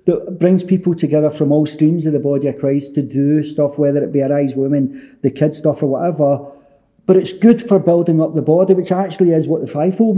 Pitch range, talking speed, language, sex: 145-185 Hz, 235 wpm, English, male